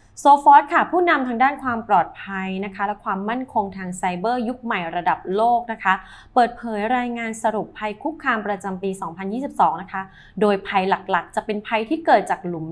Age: 20-39